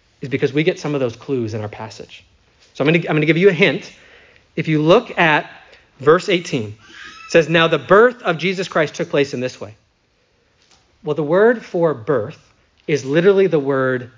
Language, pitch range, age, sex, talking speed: English, 130-175 Hz, 30-49, male, 200 wpm